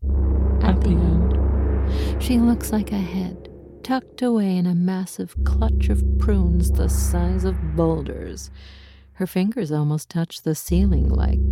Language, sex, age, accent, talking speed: English, female, 50-69, American, 140 wpm